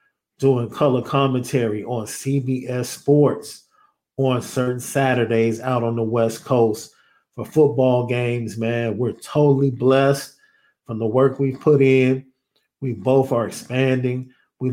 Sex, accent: male, American